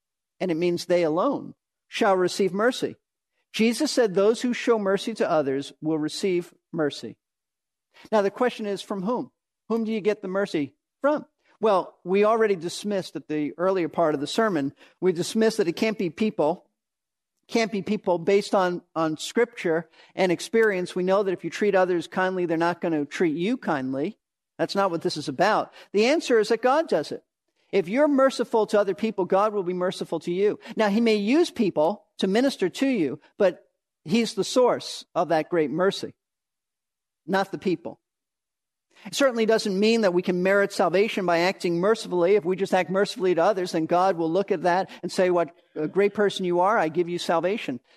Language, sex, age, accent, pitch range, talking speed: English, male, 50-69, American, 175-225 Hz, 195 wpm